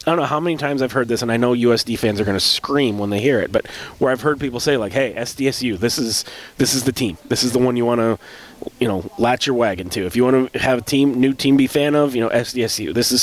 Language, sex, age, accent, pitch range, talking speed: English, male, 30-49, American, 105-130 Hz, 305 wpm